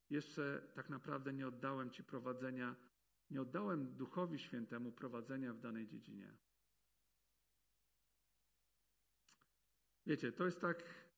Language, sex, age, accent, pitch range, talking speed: Polish, male, 50-69, native, 125-155 Hz, 100 wpm